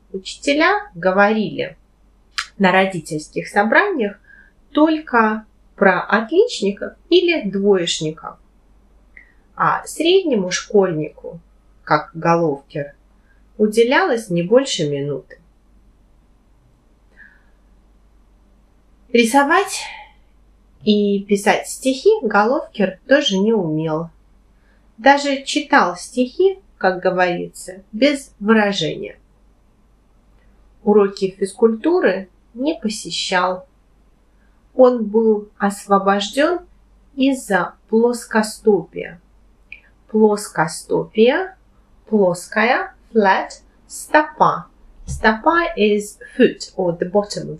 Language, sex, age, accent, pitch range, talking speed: Russian, female, 30-49, native, 185-275 Hz, 70 wpm